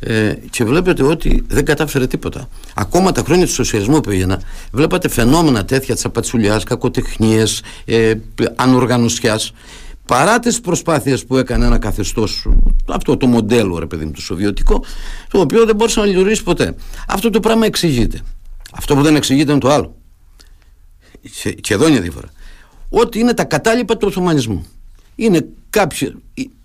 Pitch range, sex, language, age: 105-150 Hz, male, Greek, 50-69